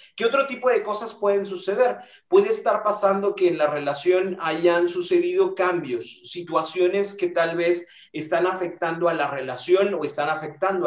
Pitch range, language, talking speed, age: 165-220 Hz, Spanish, 160 wpm, 30-49